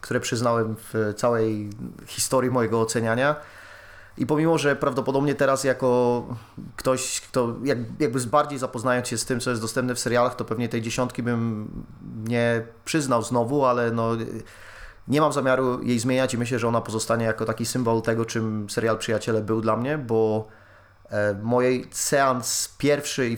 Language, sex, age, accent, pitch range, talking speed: Polish, male, 30-49, native, 110-125 Hz, 155 wpm